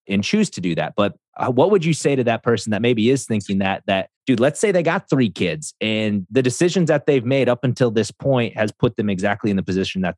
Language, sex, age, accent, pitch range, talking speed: English, male, 30-49, American, 95-120 Hz, 265 wpm